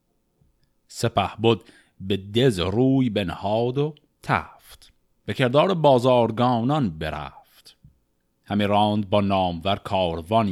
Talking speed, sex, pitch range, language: 95 wpm, male, 95-145 Hz, Persian